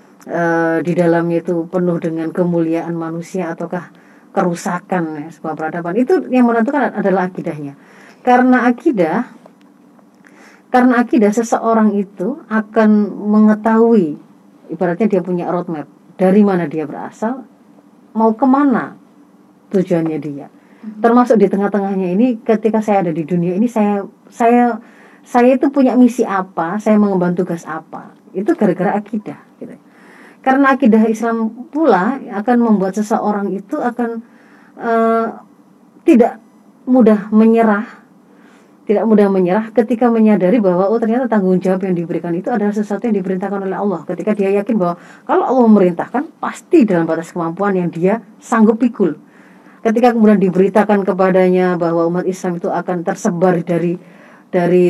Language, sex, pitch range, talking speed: Indonesian, female, 180-230 Hz, 130 wpm